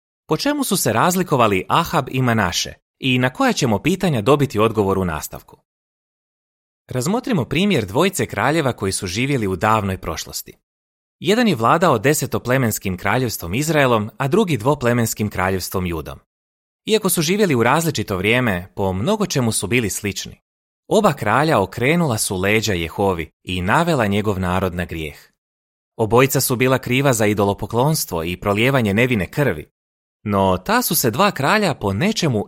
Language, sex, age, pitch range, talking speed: Croatian, male, 30-49, 90-145 Hz, 150 wpm